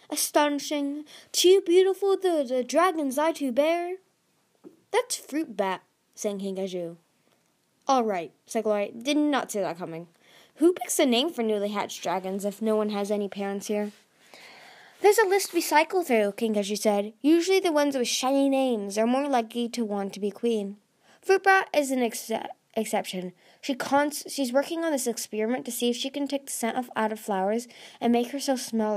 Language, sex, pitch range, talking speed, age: English, female, 210-295 Hz, 190 wpm, 10-29